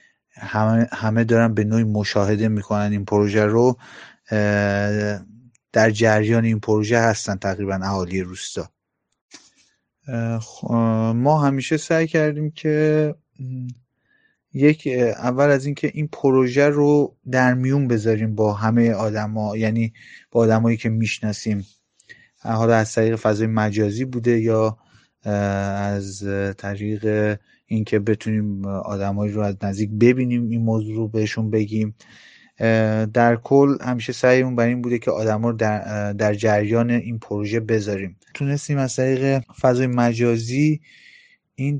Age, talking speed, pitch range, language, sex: 30-49, 120 wpm, 105-125 Hz, Persian, male